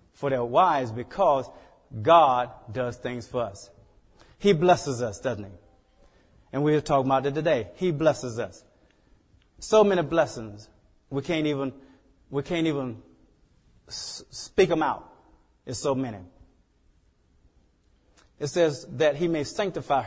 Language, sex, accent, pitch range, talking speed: English, male, American, 115-160 Hz, 135 wpm